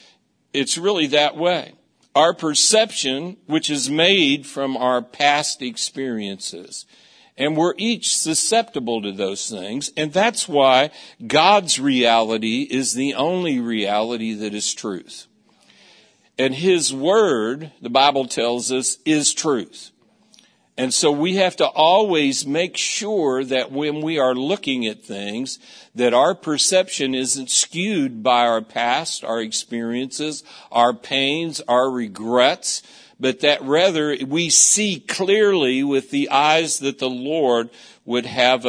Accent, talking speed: American, 130 wpm